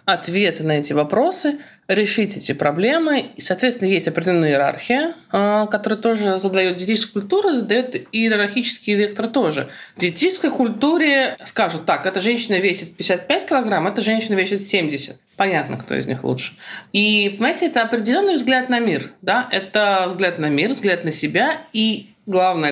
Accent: native